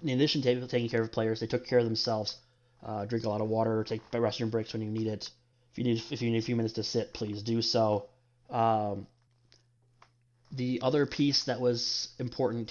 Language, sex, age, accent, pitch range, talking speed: English, male, 20-39, American, 115-125 Hz, 215 wpm